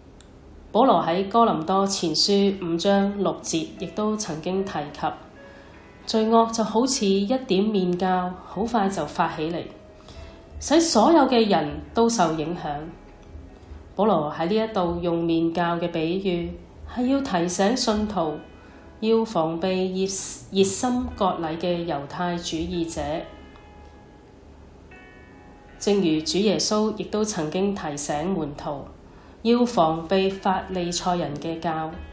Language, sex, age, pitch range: Chinese, female, 20-39, 165-210 Hz